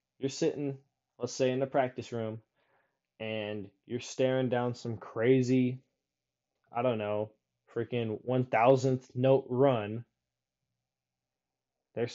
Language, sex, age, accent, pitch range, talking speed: English, male, 20-39, American, 100-135 Hz, 110 wpm